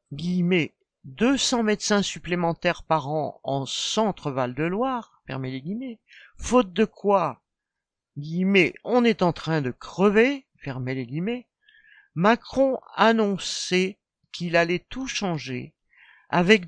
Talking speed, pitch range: 110 wpm, 150-200 Hz